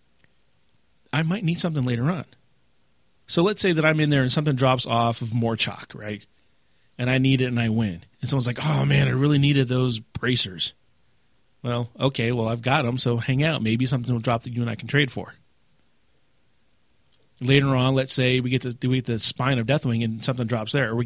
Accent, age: American, 40-59